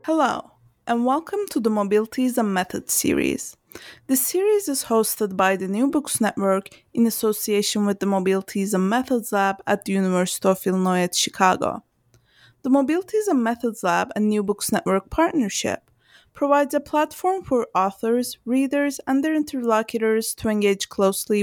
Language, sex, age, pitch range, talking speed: English, female, 20-39, 195-270 Hz, 155 wpm